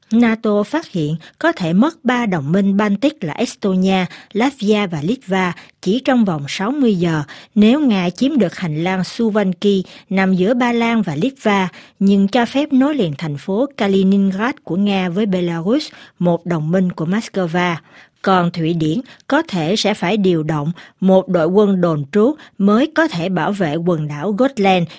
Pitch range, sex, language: 170-225 Hz, female, Vietnamese